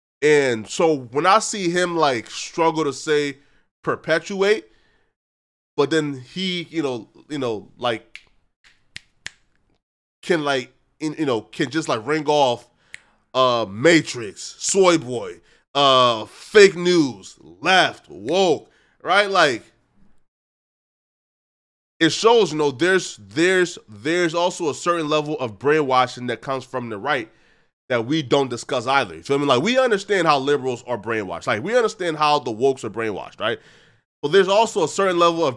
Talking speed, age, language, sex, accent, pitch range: 155 wpm, 20-39, English, male, American, 130-175 Hz